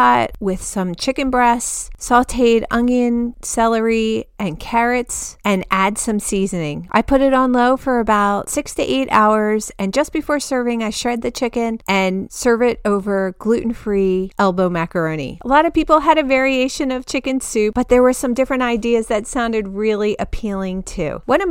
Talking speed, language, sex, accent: 175 wpm, English, female, American